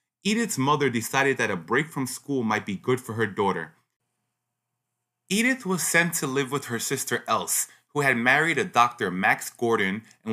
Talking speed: 180 wpm